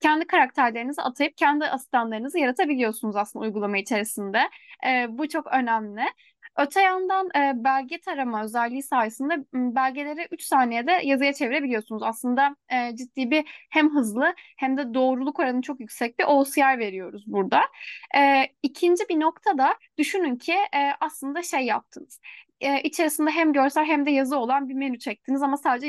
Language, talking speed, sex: Turkish, 150 wpm, female